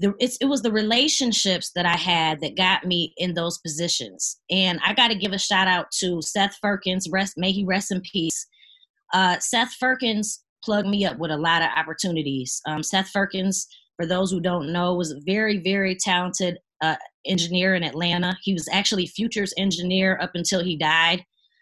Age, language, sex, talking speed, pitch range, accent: 20-39, English, female, 190 wpm, 175-205 Hz, American